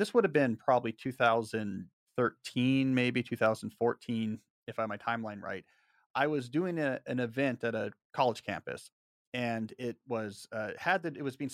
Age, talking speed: 40-59, 170 wpm